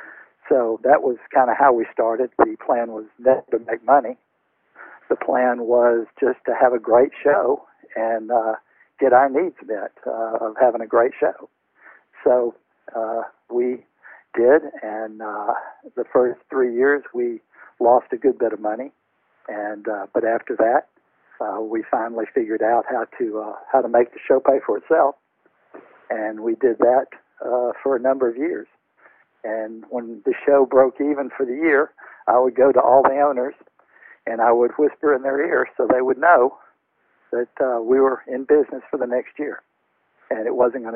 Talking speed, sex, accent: 180 wpm, male, American